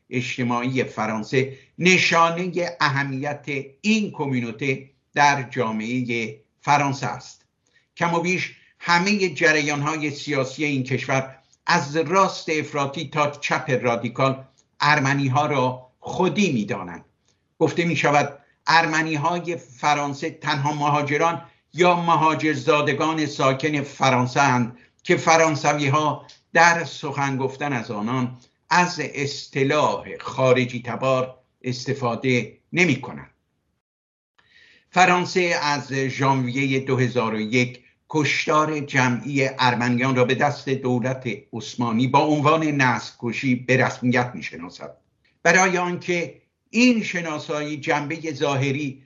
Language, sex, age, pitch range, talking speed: Persian, male, 60-79, 130-160 Hz, 100 wpm